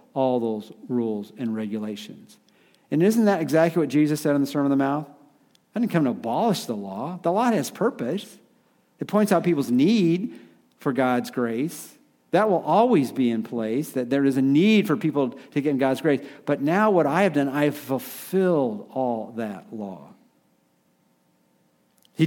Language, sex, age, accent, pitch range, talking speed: English, male, 50-69, American, 135-190 Hz, 185 wpm